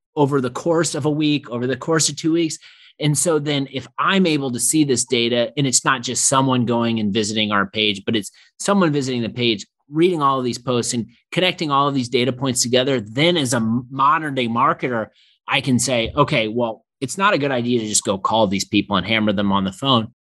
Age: 30-49